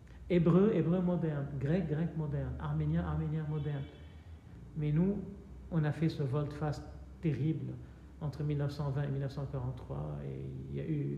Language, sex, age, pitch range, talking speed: French, male, 50-69, 140-175 Hz, 115 wpm